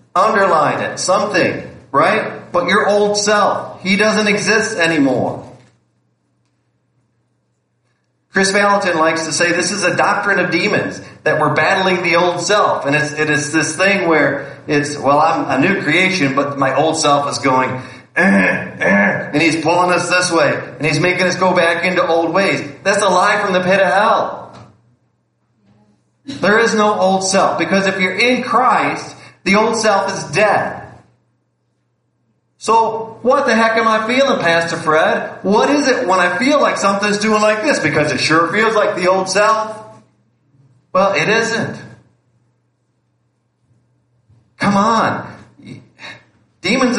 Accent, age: American, 40-59